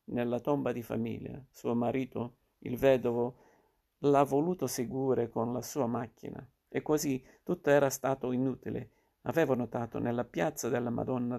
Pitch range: 120-135 Hz